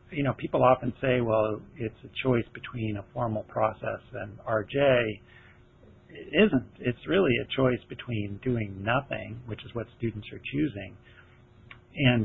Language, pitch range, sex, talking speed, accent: English, 110-125 Hz, male, 150 wpm, American